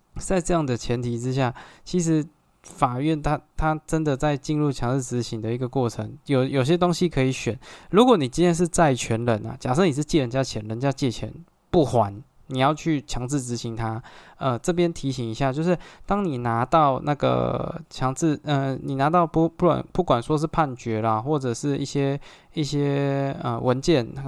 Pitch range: 120-150 Hz